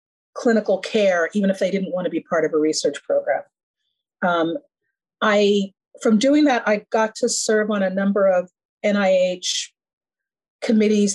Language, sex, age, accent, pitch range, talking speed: English, female, 40-59, American, 195-250 Hz, 155 wpm